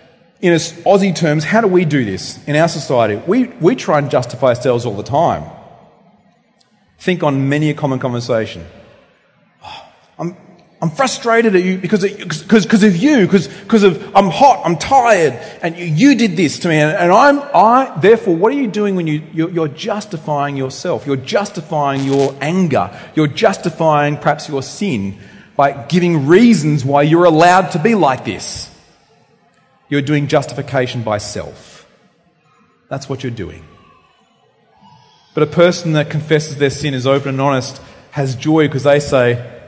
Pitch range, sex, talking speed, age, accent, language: 125-180 Hz, male, 165 wpm, 30-49, Australian, English